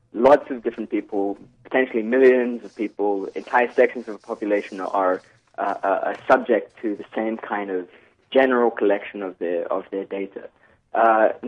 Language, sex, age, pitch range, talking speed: English, male, 20-39, 105-135 Hz, 155 wpm